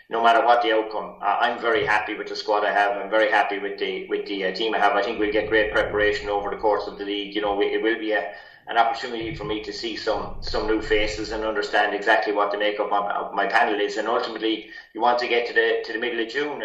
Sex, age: male, 30-49